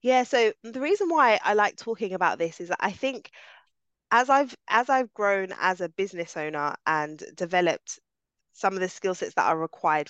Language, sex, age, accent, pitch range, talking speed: English, female, 20-39, British, 170-220 Hz, 195 wpm